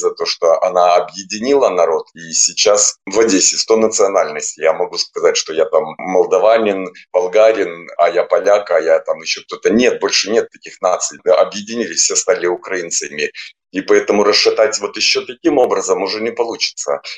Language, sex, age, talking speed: Russian, male, 30-49, 165 wpm